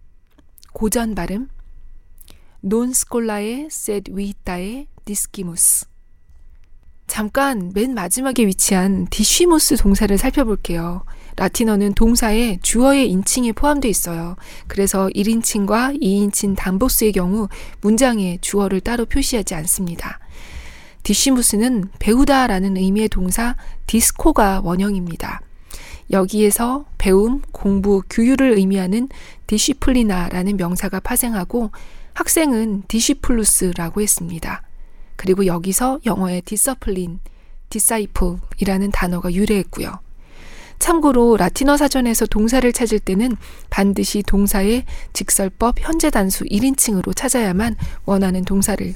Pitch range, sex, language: 185-235 Hz, female, Korean